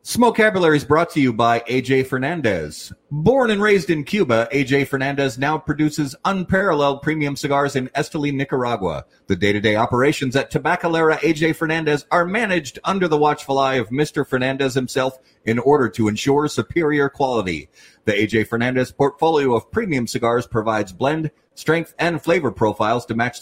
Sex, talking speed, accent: male, 155 wpm, American